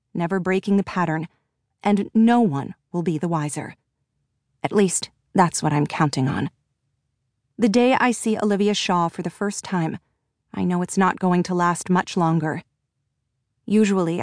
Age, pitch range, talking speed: 40-59, 165-215 Hz, 160 wpm